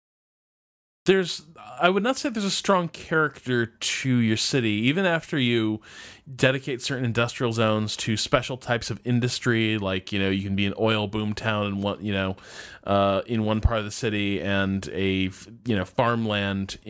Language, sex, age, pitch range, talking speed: English, male, 20-39, 100-150 Hz, 180 wpm